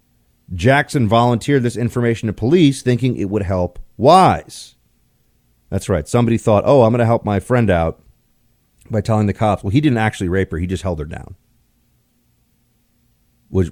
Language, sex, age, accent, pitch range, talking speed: English, male, 40-59, American, 100-140 Hz, 170 wpm